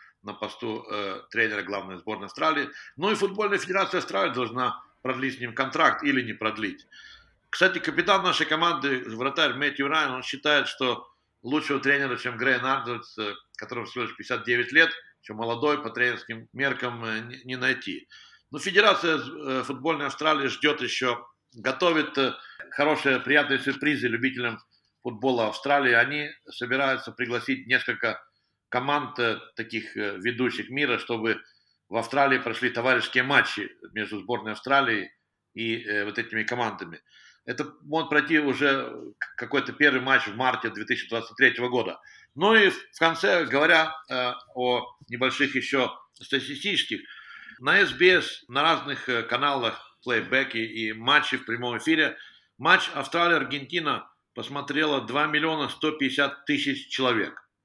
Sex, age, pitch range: male, 60-79, 125-150 Hz